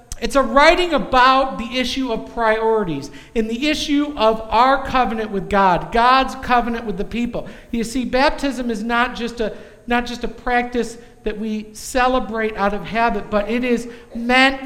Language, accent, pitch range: English, American, 210-245 Hz